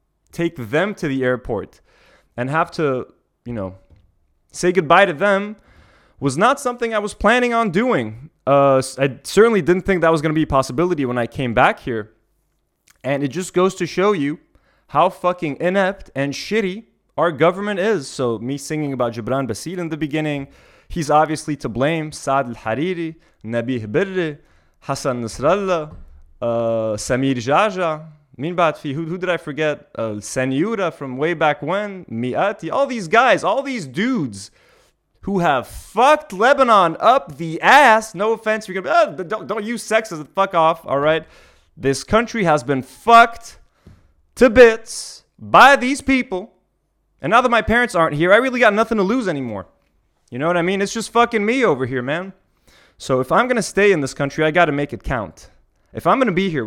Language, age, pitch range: English, 20-39, 135-200 Hz